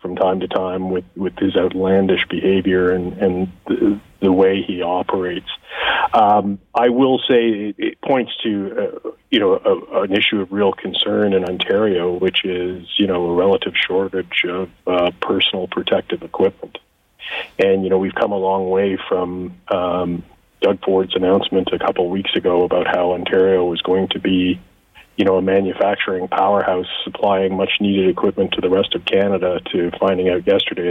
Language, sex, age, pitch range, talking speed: English, male, 40-59, 90-95 Hz, 170 wpm